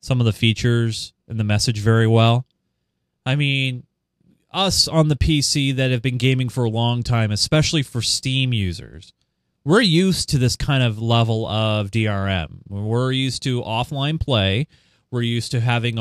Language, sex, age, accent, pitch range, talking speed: English, male, 30-49, American, 110-145 Hz, 170 wpm